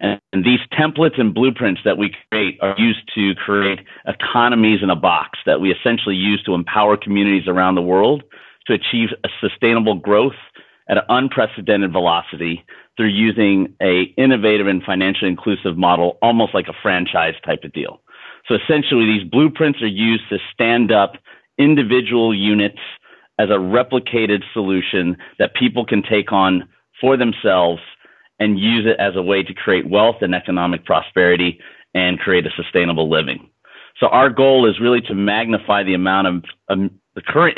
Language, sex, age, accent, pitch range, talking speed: English, male, 40-59, American, 95-115 Hz, 165 wpm